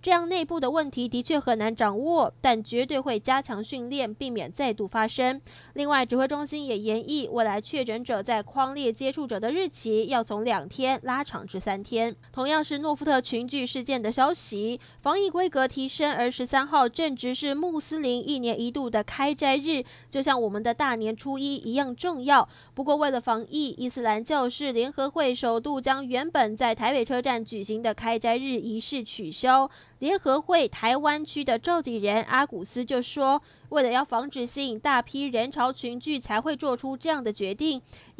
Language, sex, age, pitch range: Chinese, female, 20-39, 230-285 Hz